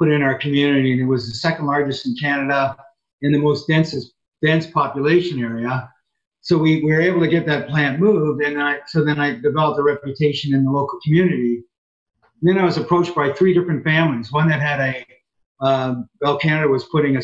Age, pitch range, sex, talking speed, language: 50-69, 130-160 Hz, male, 205 wpm, English